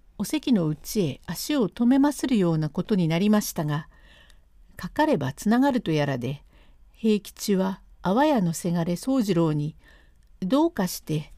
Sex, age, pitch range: female, 50-69, 165-235 Hz